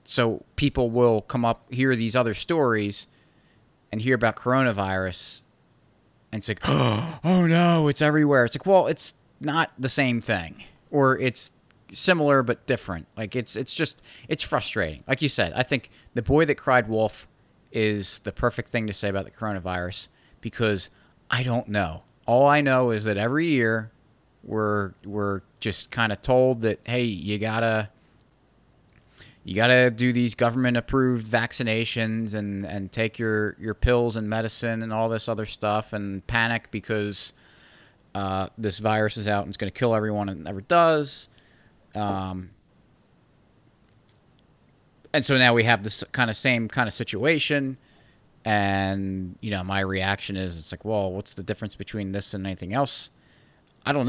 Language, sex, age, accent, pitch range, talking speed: English, male, 30-49, American, 100-125 Hz, 165 wpm